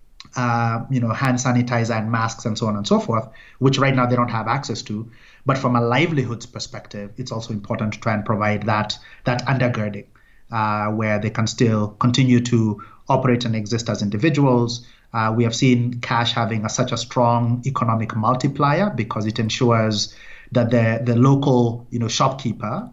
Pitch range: 110-125 Hz